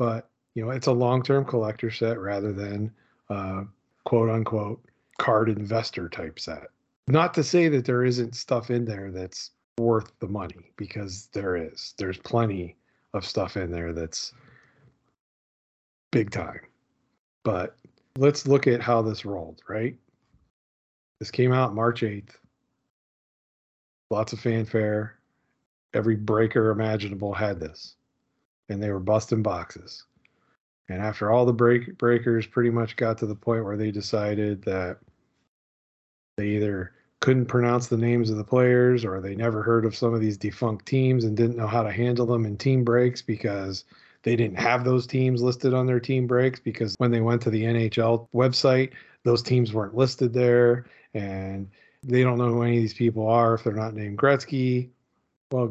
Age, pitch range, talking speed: 40-59, 105-125 Hz, 165 wpm